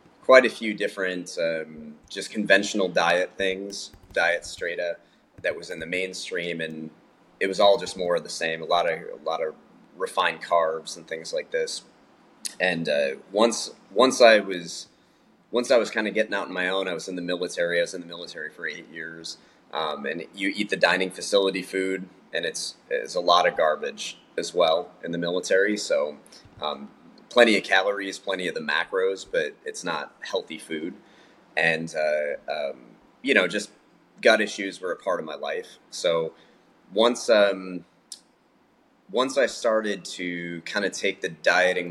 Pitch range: 85-115 Hz